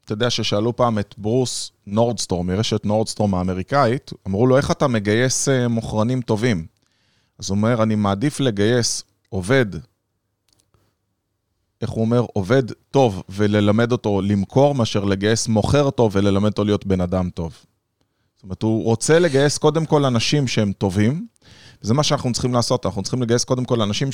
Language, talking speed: Hebrew, 155 wpm